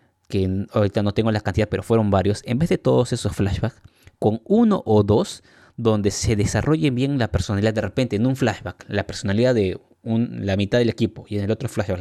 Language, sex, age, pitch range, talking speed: Spanish, male, 20-39, 95-110 Hz, 215 wpm